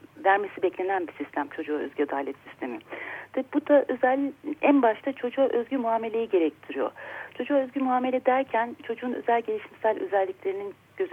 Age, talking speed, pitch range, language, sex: 40-59, 145 wpm, 195-275 Hz, Turkish, female